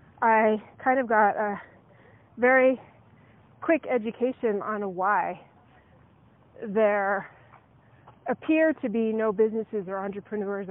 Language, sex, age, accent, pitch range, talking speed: English, female, 30-49, American, 200-250 Hz, 100 wpm